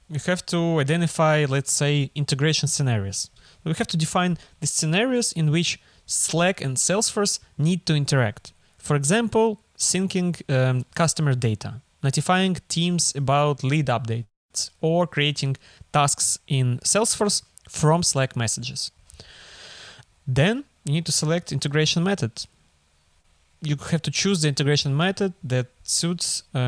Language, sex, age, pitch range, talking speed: English, male, 20-39, 130-170 Hz, 130 wpm